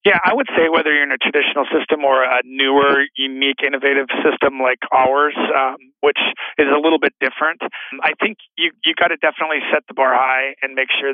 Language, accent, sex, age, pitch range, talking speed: English, American, male, 40-59, 140-175 Hz, 210 wpm